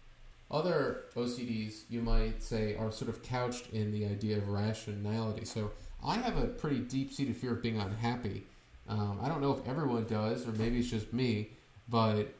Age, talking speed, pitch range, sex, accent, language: 30-49, 180 wpm, 105-125 Hz, male, American, English